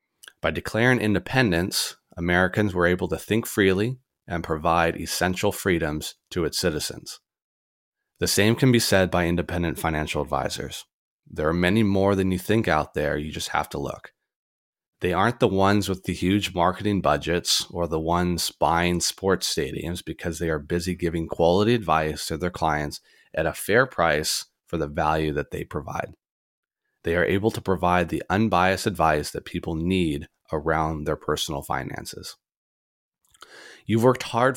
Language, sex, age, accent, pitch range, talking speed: English, male, 30-49, American, 80-95 Hz, 160 wpm